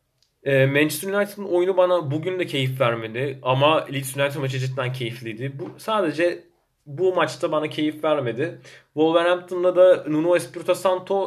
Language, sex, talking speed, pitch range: Turkish, male, 140 wpm, 130-180 Hz